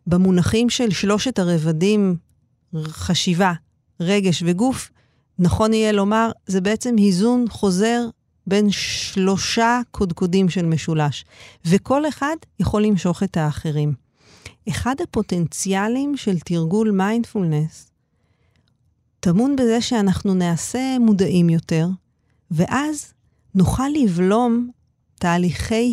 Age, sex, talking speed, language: 40-59, female, 95 wpm, Hebrew